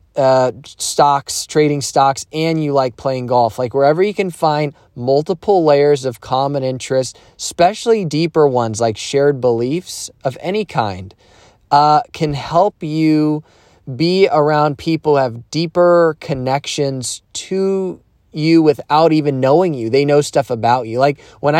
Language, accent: English, American